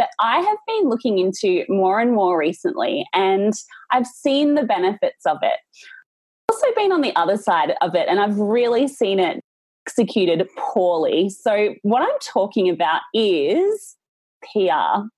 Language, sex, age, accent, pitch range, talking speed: English, female, 20-39, Australian, 185-290 Hz, 160 wpm